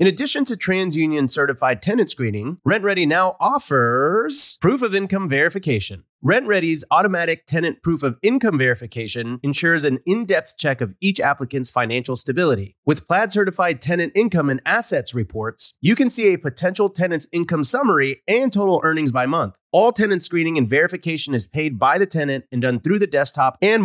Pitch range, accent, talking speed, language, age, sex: 125-185 Hz, American, 170 wpm, English, 30-49, male